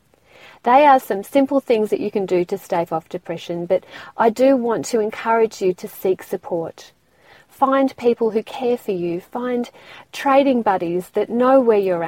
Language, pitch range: English, 185-245 Hz